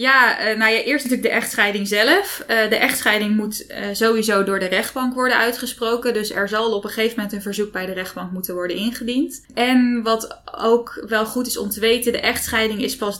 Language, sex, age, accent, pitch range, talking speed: Dutch, female, 20-39, Dutch, 195-230 Hz, 205 wpm